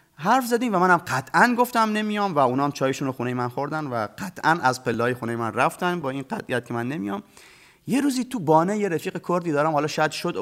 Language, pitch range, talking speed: Persian, 135-195 Hz, 220 wpm